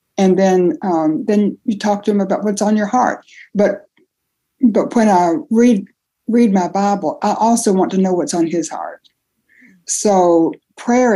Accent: American